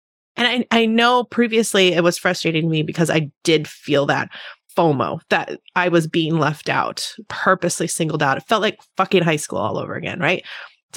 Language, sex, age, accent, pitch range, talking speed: English, female, 20-39, American, 170-220 Hz, 195 wpm